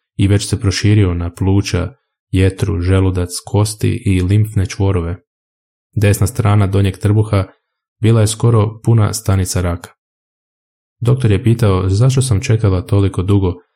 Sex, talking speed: male, 130 wpm